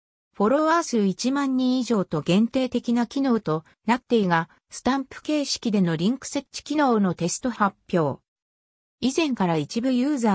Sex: female